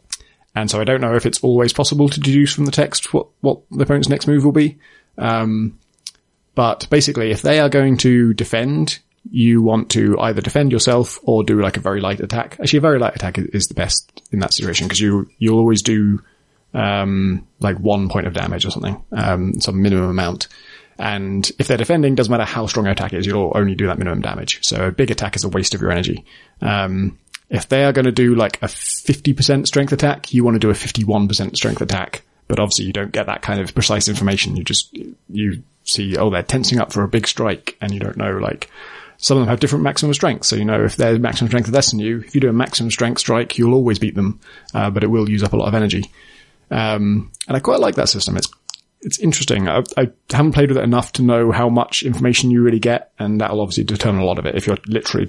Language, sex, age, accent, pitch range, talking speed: English, male, 20-39, British, 100-125 Hz, 240 wpm